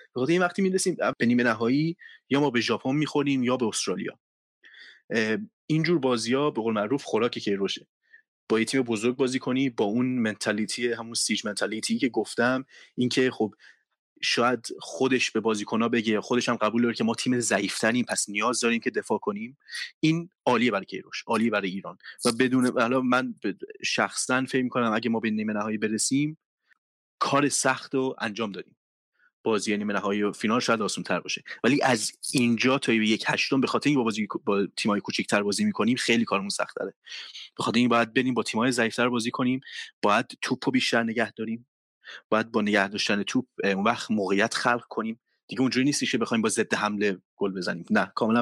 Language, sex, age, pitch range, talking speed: Persian, male, 30-49, 110-130 Hz, 175 wpm